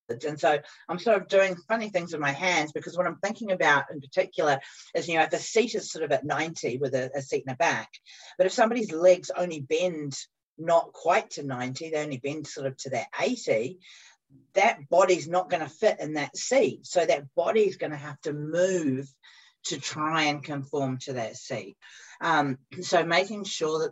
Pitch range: 135-175 Hz